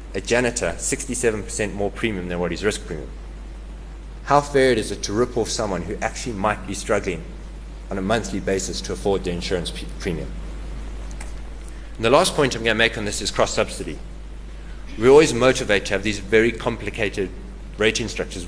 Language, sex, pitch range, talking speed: English, male, 95-125 Hz, 170 wpm